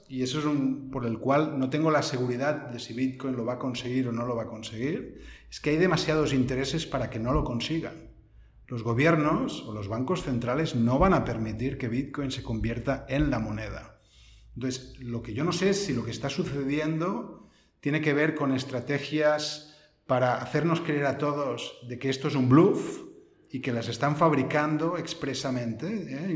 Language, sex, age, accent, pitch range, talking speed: Spanish, male, 40-59, Spanish, 125-155 Hz, 195 wpm